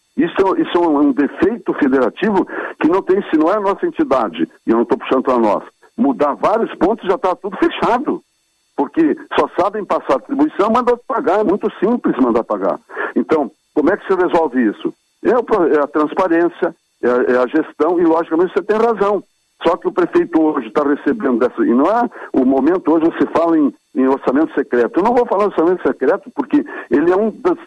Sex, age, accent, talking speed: male, 60-79, Brazilian, 190 wpm